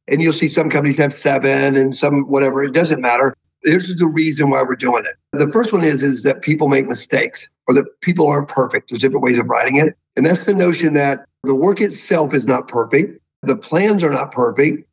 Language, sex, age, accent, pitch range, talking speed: Dutch, male, 50-69, American, 135-160 Hz, 230 wpm